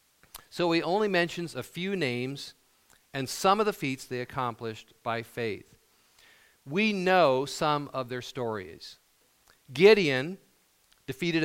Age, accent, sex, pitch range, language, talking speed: 50-69, American, male, 125-165 Hz, English, 125 wpm